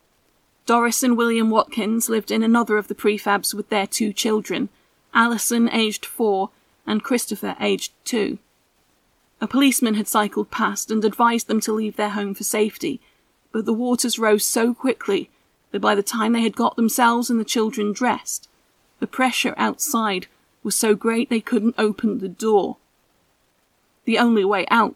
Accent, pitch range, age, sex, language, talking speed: British, 210-235 Hz, 40-59, female, English, 165 wpm